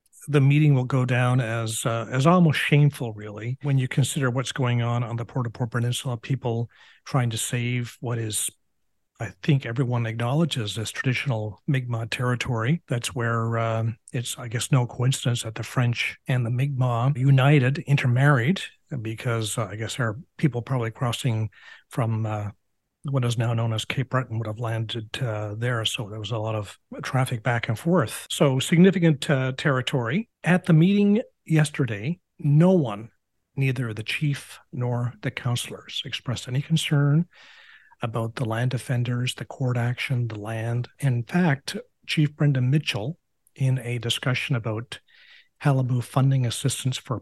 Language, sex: English, male